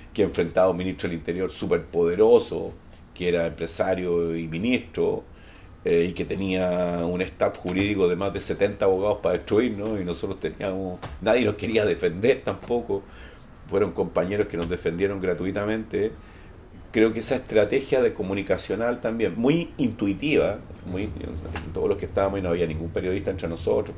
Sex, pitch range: male, 85-110 Hz